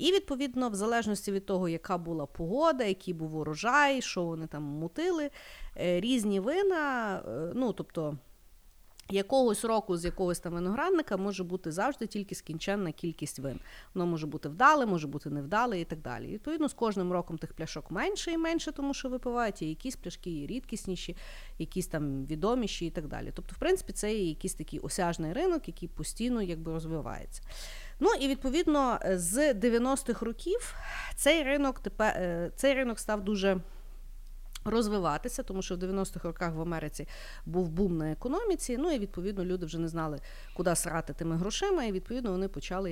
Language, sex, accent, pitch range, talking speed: Ukrainian, female, native, 165-245 Hz, 165 wpm